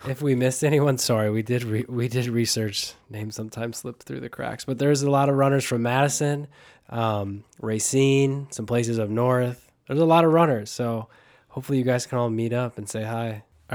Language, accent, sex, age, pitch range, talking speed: English, American, male, 20-39, 115-140 Hz, 210 wpm